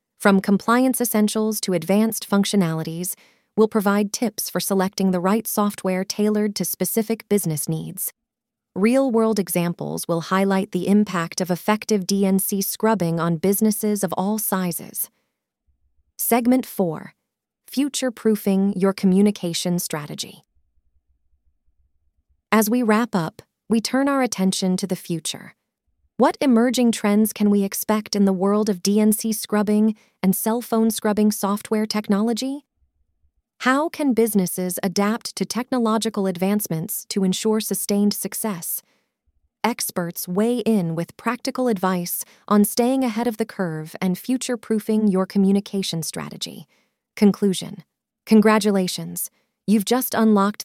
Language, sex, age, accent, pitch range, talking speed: English, female, 30-49, American, 180-220 Hz, 120 wpm